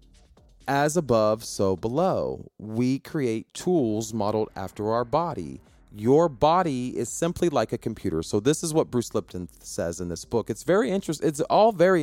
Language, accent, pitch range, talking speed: English, American, 95-135 Hz, 170 wpm